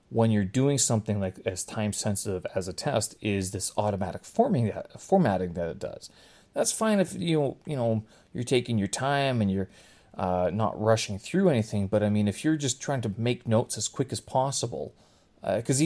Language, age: English, 30-49